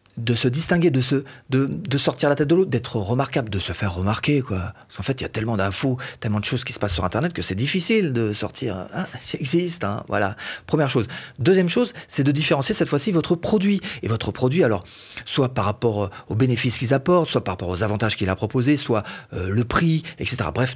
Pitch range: 115-160 Hz